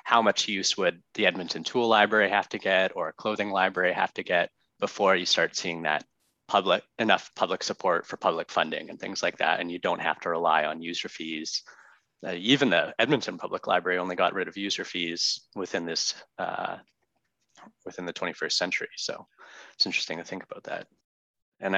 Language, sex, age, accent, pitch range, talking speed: English, male, 20-39, American, 85-110 Hz, 195 wpm